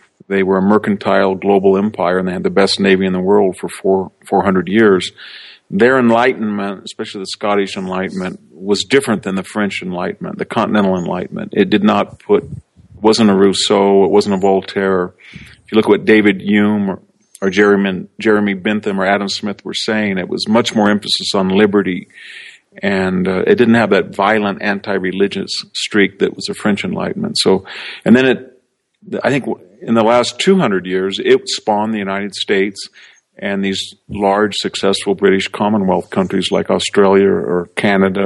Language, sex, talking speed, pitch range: English, male, 175 wpm, 95-105 Hz